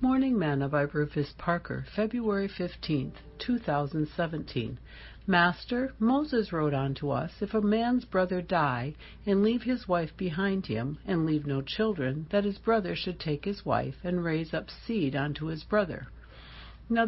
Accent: American